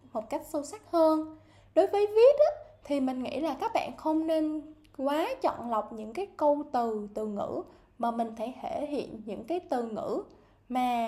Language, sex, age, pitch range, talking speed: Vietnamese, female, 10-29, 250-325 Hz, 190 wpm